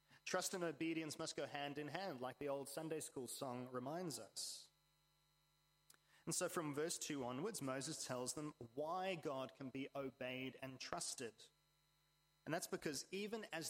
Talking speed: 160 wpm